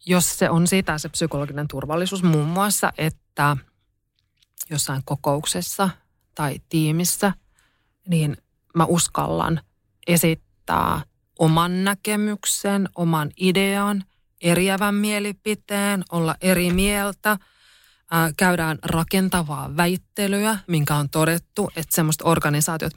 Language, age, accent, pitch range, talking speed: Finnish, 30-49, native, 145-185 Hz, 95 wpm